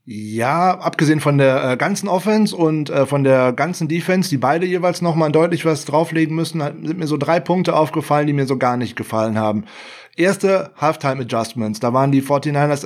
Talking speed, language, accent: 190 wpm, German, German